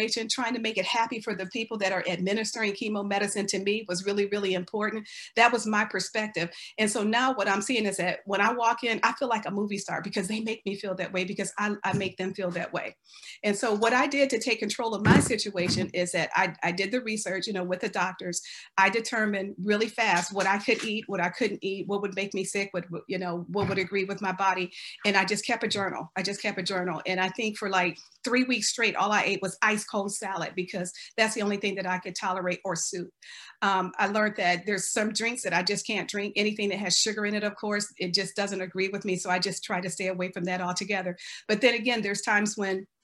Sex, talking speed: female, 260 wpm